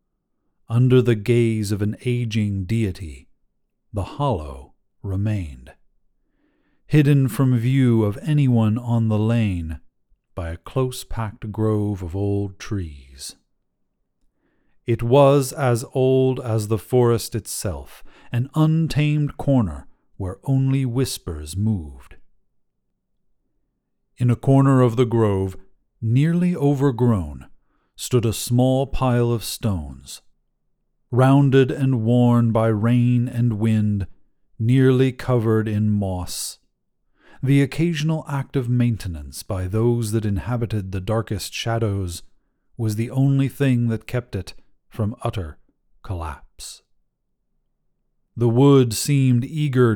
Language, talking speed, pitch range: English, 110 wpm, 100-130 Hz